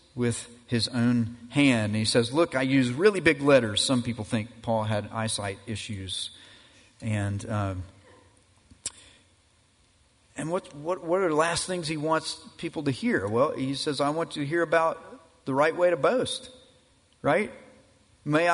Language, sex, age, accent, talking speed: English, male, 40-59, American, 165 wpm